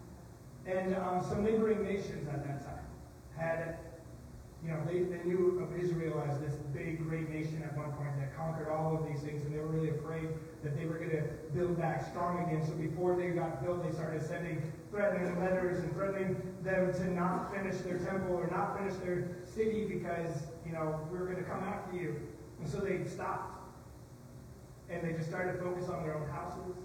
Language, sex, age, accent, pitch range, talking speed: English, male, 30-49, American, 150-180 Hz, 205 wpm